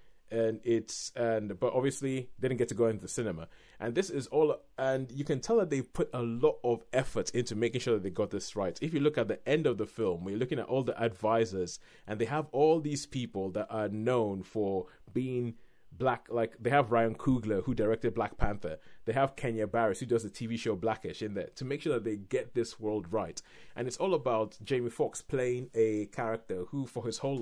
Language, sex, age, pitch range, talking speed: English, male, 30-49, 110-130 Hz, 230 wpm